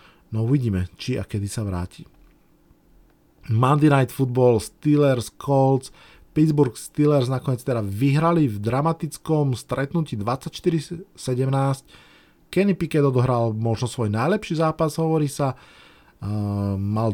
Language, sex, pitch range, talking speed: Slovak, male, 115-135 Hz, 110 wpm